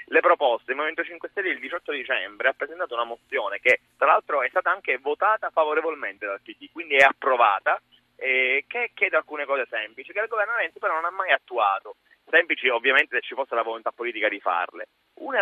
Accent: native